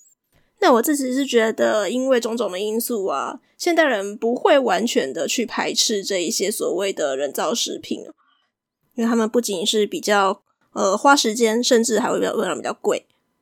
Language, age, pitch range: Chinese, 20-39, 220-275 Hz